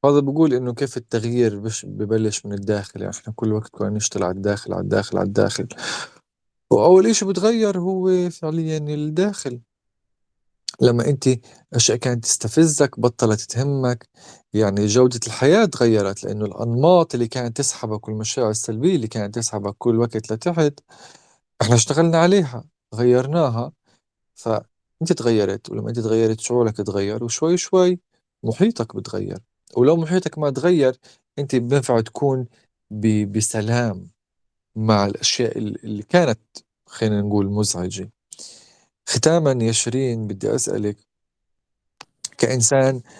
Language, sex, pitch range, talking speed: Arabic, male, 105-140 Hz, 115 wpm